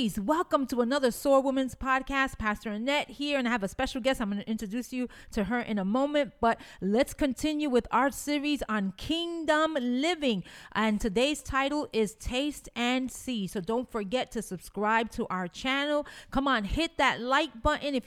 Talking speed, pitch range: 185 wpm, 220-290 Hz